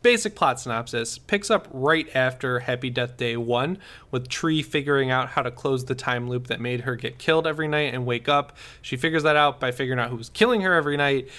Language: English